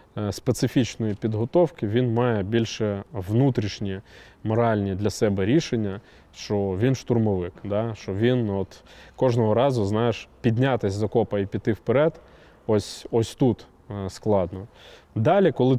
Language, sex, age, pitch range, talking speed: Russian, male, 20-39, 105-125 Hz, 120 wpm